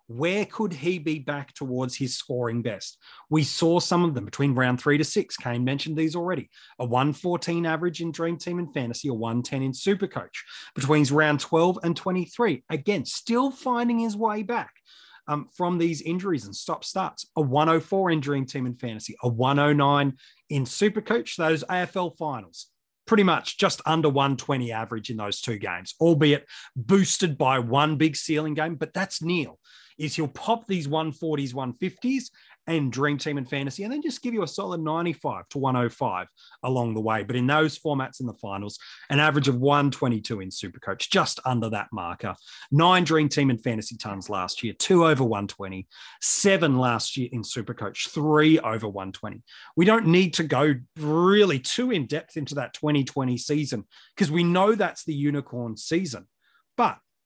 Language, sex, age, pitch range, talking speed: English, male, 30-49, 125-170 Hz, 175 wpm